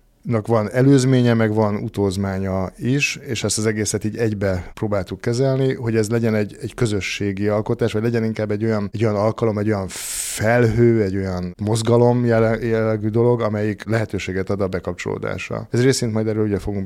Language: Hungarian